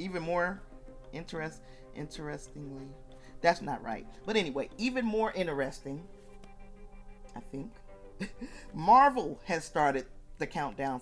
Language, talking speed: English, 105 wpm